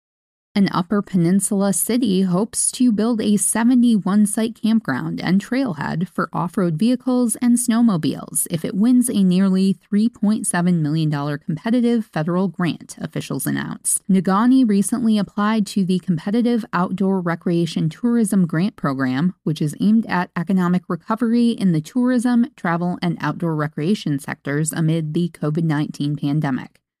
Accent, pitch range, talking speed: American, 170-220 Hz, 130 wpm